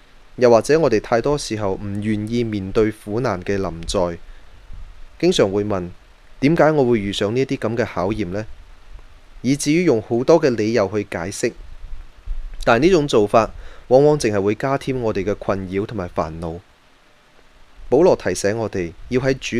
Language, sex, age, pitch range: Chinese, male, 20-39, 95-120 Hz